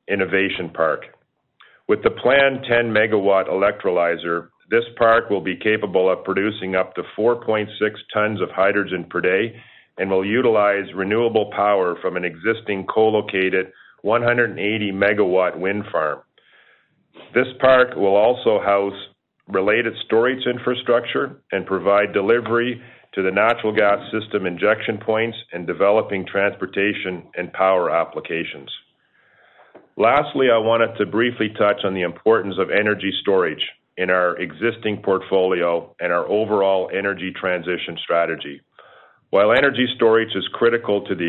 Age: 40-59